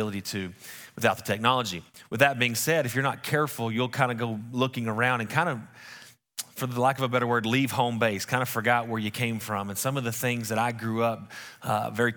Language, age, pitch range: English, 30-49, 100-120 Hz